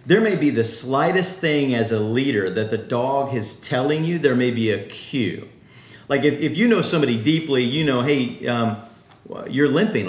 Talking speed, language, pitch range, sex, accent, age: 195 wpm, English, 115-155 Hz, male, American, 40-59